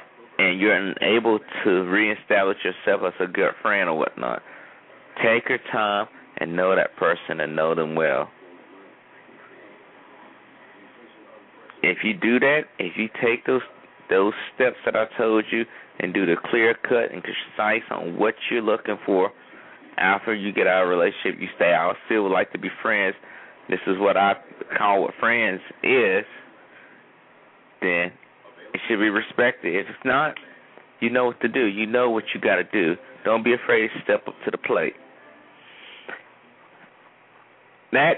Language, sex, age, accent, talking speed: English, male, 30-49, American, 160 wpm